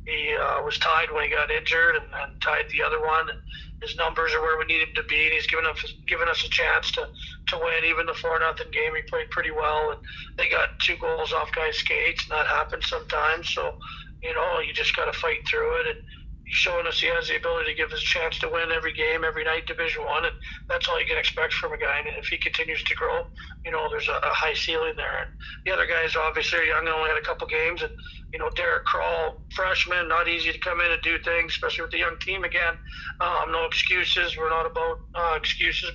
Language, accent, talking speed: English, American, 245 wpm